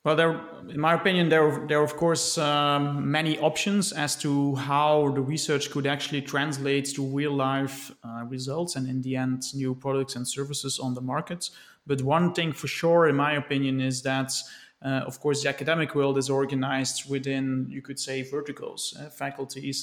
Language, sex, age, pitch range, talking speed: English, male, 30-49, 135-155 Hz, 180 wpm